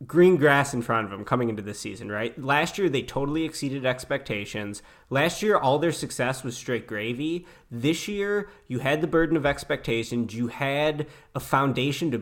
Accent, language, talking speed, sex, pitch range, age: American, English, 185 wpm, male, 115-155 Hz, 20-39